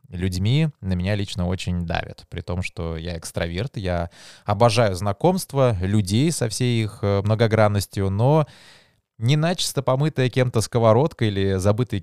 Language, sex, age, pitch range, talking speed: Russian, male, 20-39, 95-120 Hz, 130 wpm